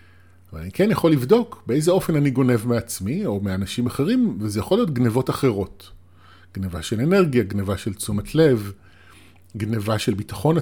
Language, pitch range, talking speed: Hebrew, 90-130 Hz, 160 wpm